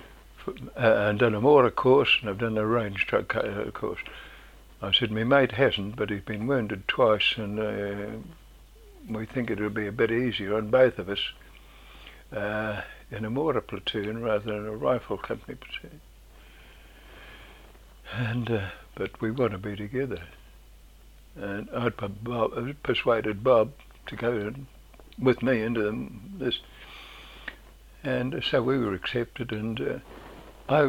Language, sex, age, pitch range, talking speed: English, male, 60-79, 105-125 Hz, 145 wpm